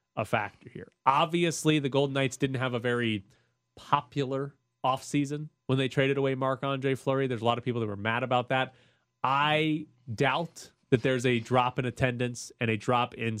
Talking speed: 185 wpm